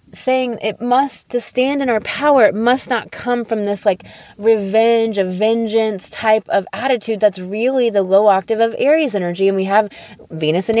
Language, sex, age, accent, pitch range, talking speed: English, female, 20-39, American, 185-230 Hz, 190 wpm